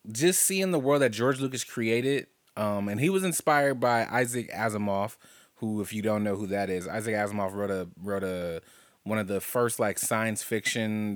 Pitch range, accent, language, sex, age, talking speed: 100-120 Hz, American, English, male, 20-39, 200 wpm